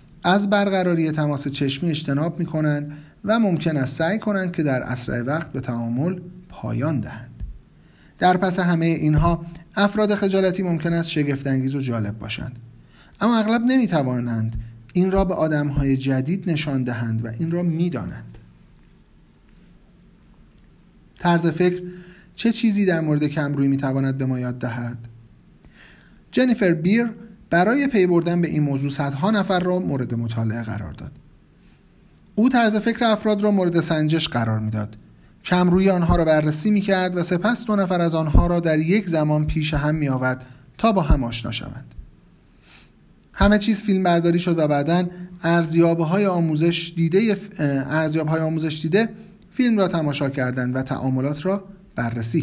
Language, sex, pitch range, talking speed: Persian, male, 135-185 Hz, 145 wpm